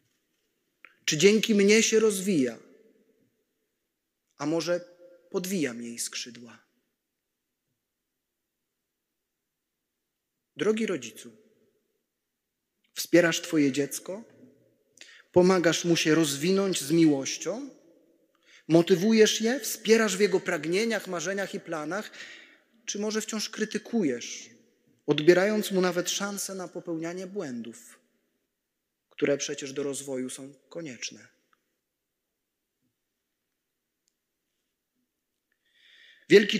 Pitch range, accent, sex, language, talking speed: 160-210 Hz, native, male, Polish, 80 wpm